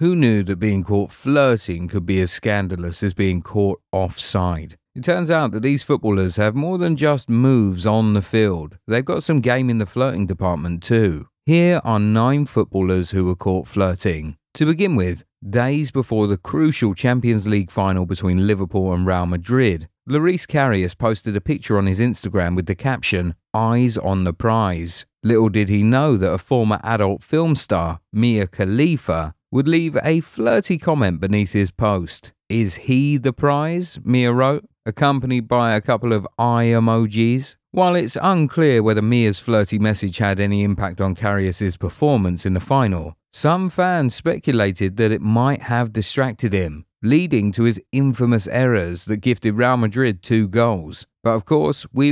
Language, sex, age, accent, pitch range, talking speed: English, male, 40-59, British, 95-130 Hz, 170 wpm